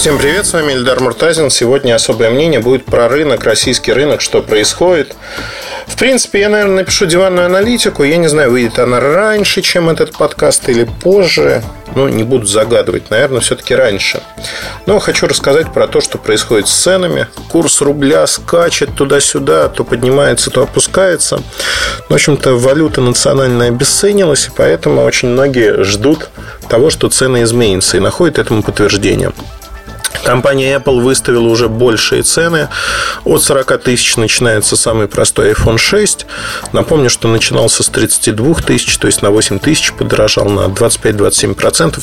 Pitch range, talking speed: 115-180 Hz, 150 wpm